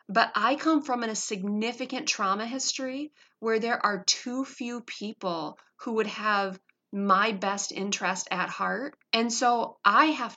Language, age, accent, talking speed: English, 30-49, American, 150 wpm